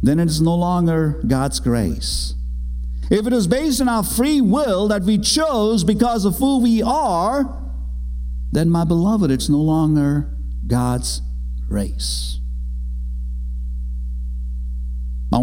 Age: 50-69